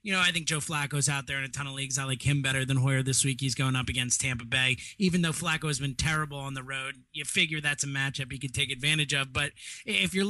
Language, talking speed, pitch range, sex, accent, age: English, 285 wpm, 145-175 Hz, male, American, 30-49